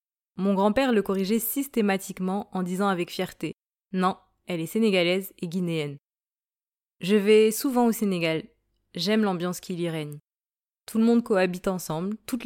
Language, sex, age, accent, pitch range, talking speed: French, female, 20-39, French, 180-215 Hz, 165 wpm